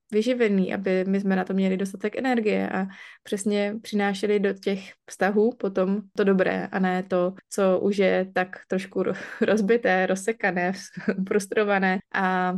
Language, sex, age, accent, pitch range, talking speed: Czech, female, 20-39, native, 190-210 Hz, 145 wpm